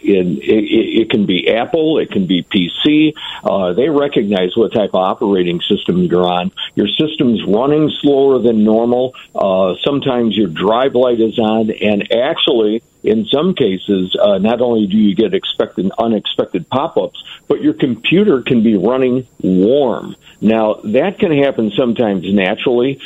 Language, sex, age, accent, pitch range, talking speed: English, male, 50-69, American, 100-140 Hz, 155 wpm